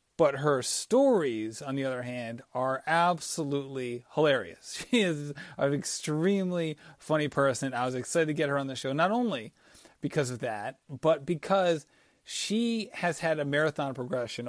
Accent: American